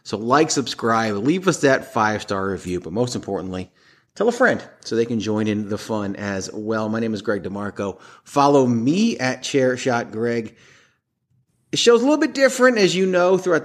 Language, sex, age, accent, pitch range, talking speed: English, male, 30-49, American, 105-140 Hz, 185 wpm